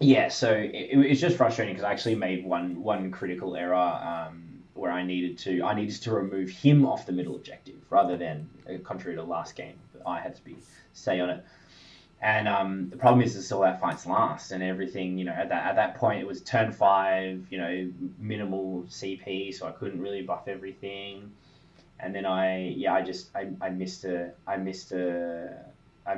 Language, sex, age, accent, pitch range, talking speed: English, male, 20-39, Australian, 90-100 Hz, 200 wpm